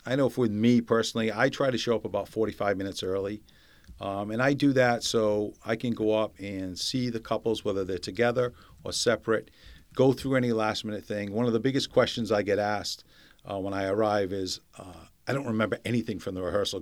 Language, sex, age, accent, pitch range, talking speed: English, male, 50-69, American, 100-120 Hz, 210 wpm